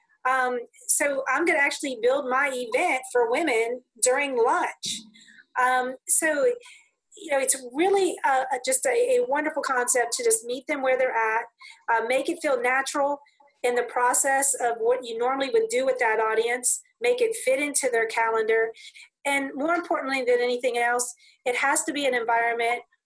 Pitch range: 245-380 Hz